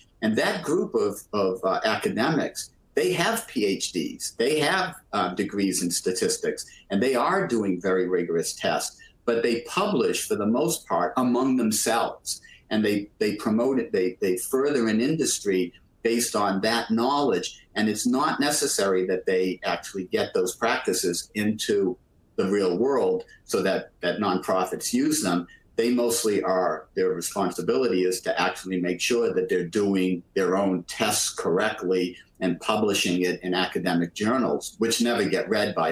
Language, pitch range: English, 90-120 Hz